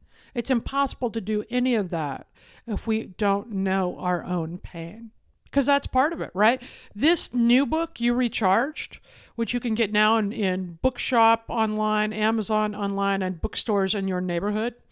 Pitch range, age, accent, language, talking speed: 210-275 Hz, 60-79, American, English, 165 wpm